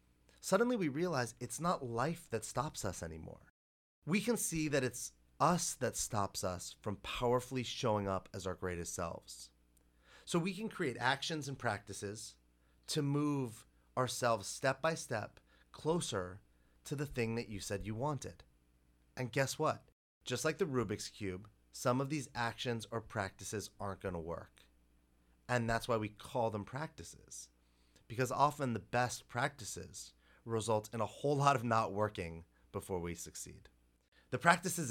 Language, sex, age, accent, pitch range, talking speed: English, male, 30-49, American, 85-135 Hz, 155 wpm